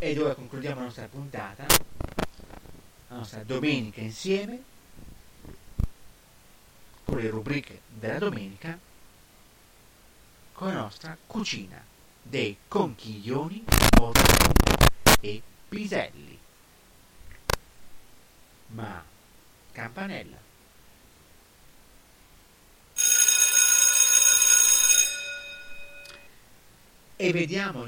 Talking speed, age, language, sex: 60 wpm, 50-69, Italian, male